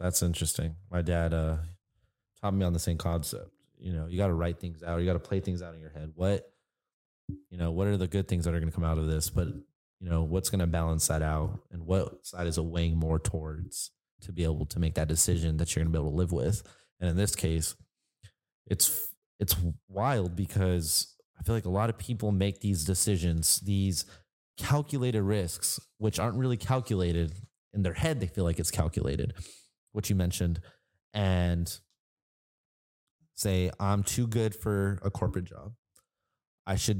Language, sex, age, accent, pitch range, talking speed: English, male, 20-39, American, 85-100 Hz, 200 wpm